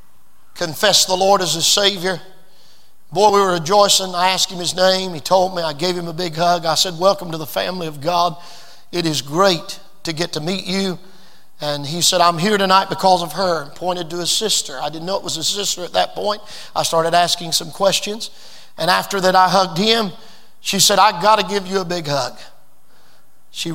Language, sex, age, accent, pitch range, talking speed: English, male, 40-59, American, 175-215 Hz, 215 wpm